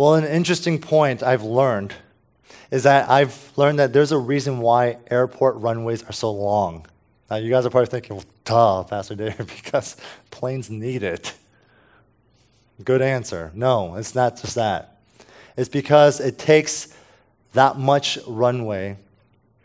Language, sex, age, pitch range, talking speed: English, male, 20-39, 110-145 Hz, 145 wpm